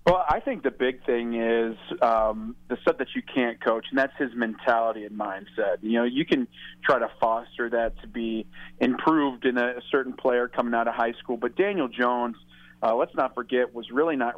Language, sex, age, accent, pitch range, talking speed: English, male, 40-59, American, 120-145 Hz, 210 wpm